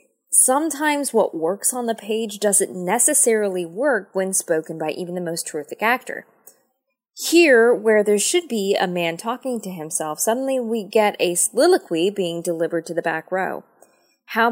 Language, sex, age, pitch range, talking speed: English, female, 20-39, 175-250 Hz, 160 wpm